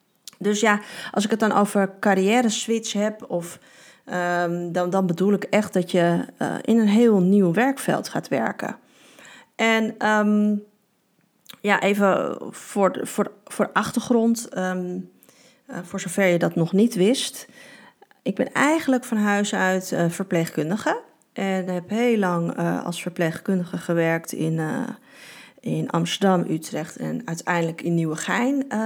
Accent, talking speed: Dutch, 150 wpm